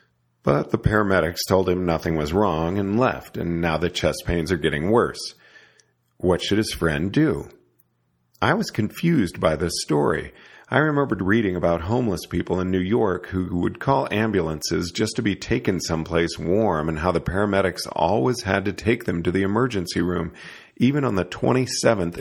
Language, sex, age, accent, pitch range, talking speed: English, male, 50-69, American, 80-105 Hz, 175 wpm